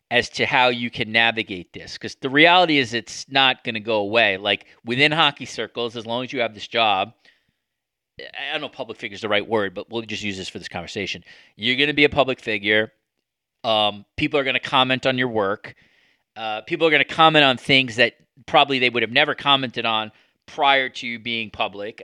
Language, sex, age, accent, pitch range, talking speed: English, male, 30-49, American, 110-130 Hz, 225 wpm